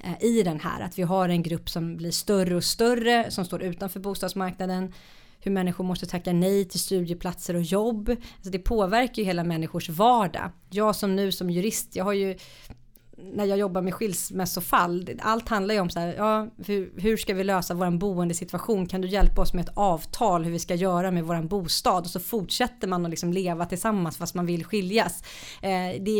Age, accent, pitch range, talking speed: 30-49, native, 175-210 Hz, 200 wpm